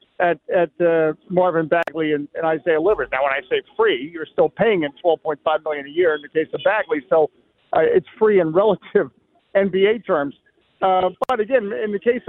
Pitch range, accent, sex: 190-270 Hz, American, male